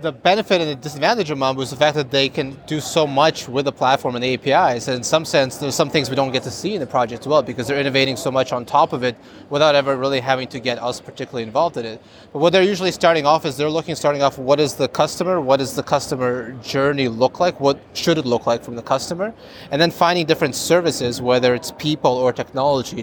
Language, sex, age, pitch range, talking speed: English, male, 30-49, 125-145 Hz, 260 wpm